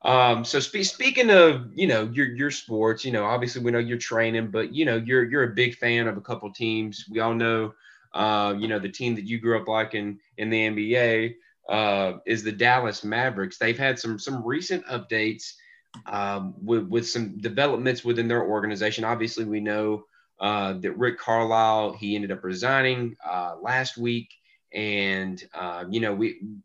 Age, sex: 30-49, male